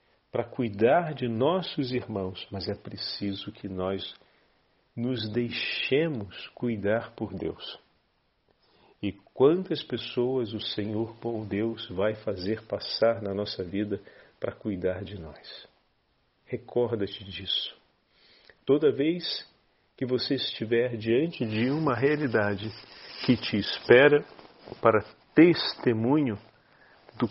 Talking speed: 110 wpm